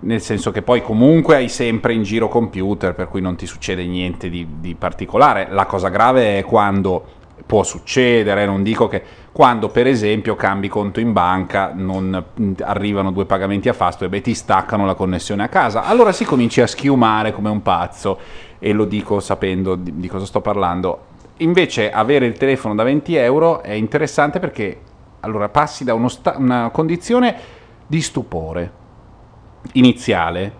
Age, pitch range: 30-49, 95-135 Hz